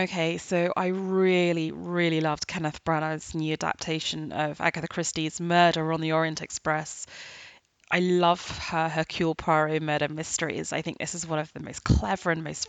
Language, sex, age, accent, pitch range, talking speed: English, female, 20-39, British, 155-180 Hz, 170 wpm